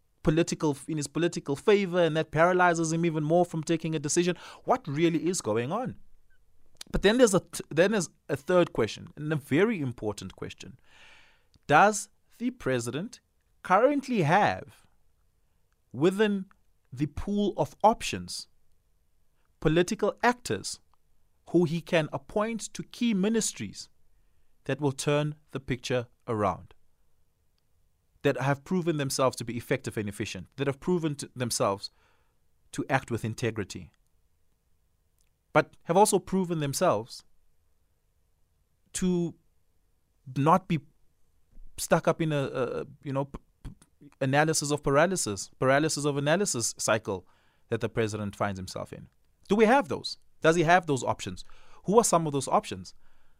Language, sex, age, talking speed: English, male, 30-49, 135 wpm